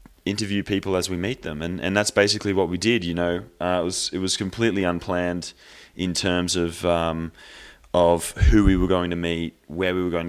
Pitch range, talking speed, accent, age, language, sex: 85-95 Hz, 215 wpm, Australian, 20-39, English, male